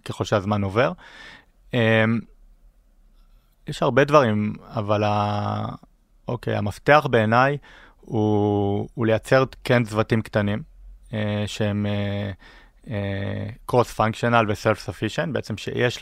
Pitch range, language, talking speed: 105-120 Hz, Hebrew, 95 wpm